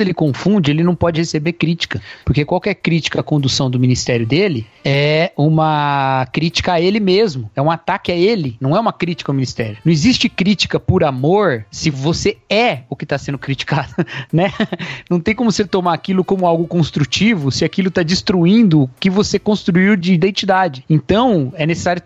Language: Portuguese